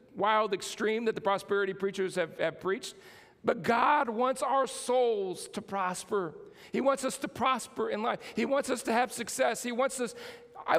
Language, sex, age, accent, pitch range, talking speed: English, male, 50-69, American, 205-260 Hz, 185 wpm